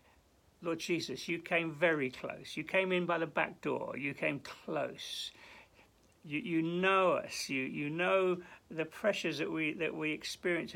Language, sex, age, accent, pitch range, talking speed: English, male, 60-79, British, 160-245 Hz, 165 wpm